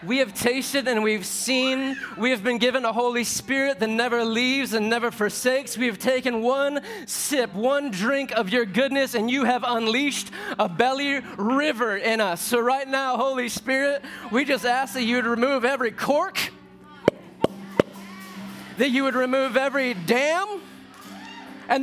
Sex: male